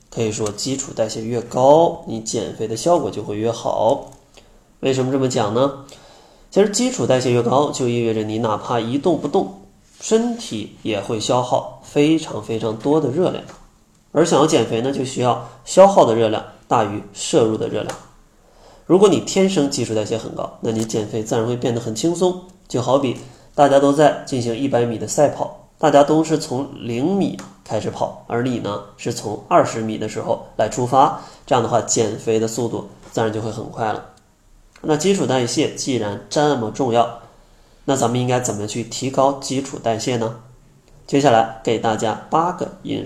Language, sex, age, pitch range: Chinese, male, 20-39, 115-145 Hz